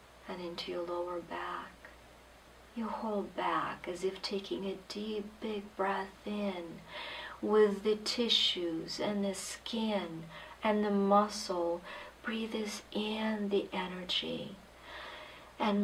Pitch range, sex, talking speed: 185-210 Hz, female, 110 wpm